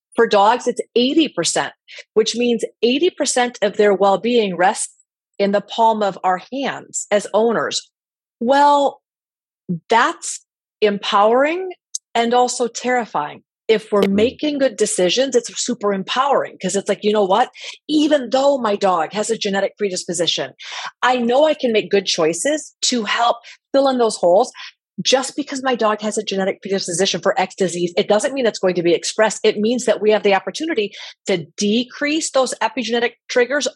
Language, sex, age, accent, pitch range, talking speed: English, female, 30-49, American, 195-255 Hz, 160 wpm